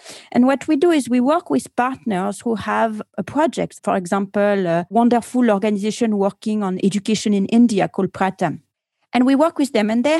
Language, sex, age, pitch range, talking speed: English, female, 40-59, 200-255 Hz, 190 wpm